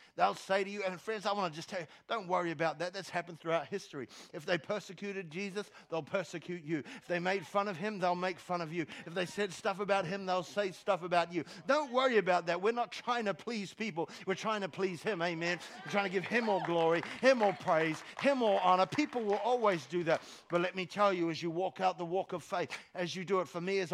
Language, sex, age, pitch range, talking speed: English, male, 50-69, 165-200 Hz, 260 wpm